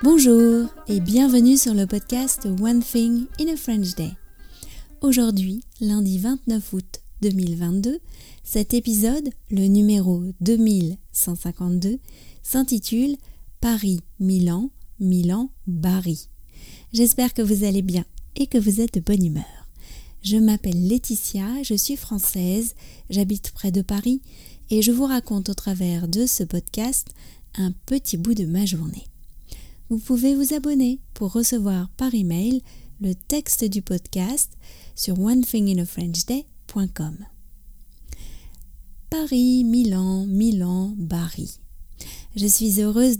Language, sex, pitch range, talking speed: French, female, 185-235 Hz, 120 wpm